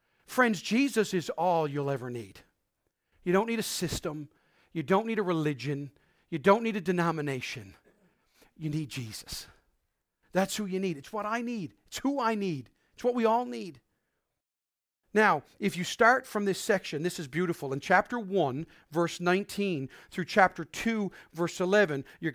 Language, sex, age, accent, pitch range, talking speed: English, male, 40-59, American, 155-210 Hz, 170 wpm